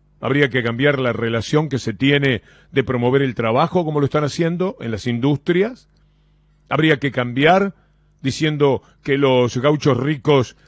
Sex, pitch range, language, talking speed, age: male, 125-155 Hz, Spanish, 150 wpm, 40-59